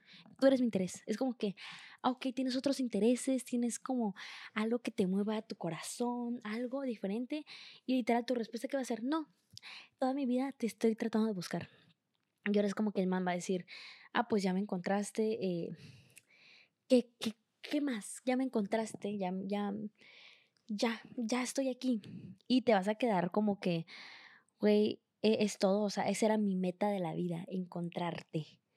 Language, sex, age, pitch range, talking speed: English, female, 20-39, 195-240 Hz, 180 wpm